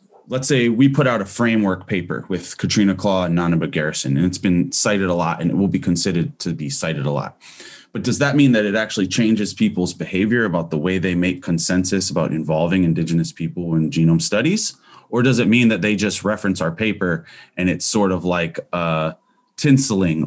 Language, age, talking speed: English, 30-49, 205 wpm